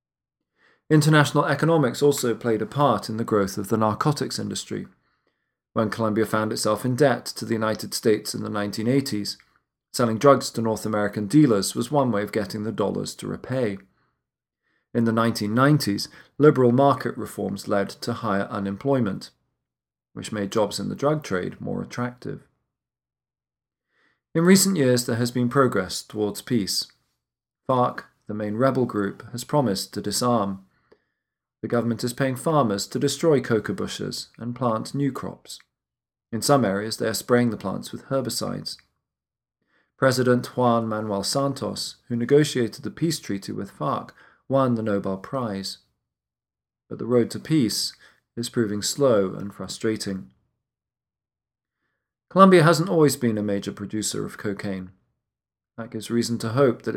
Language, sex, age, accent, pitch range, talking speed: English, male, 40-59, British, 105-135 Hz, 150 wpm